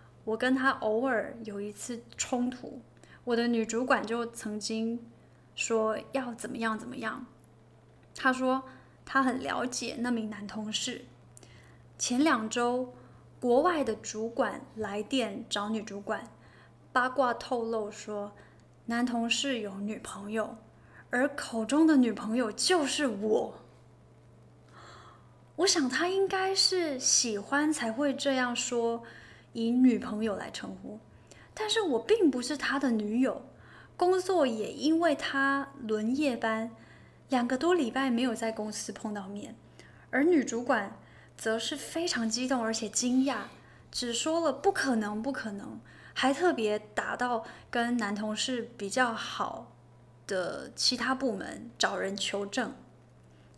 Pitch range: 220-270 Hz